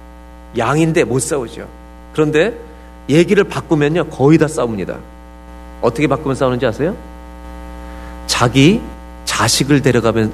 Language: Korean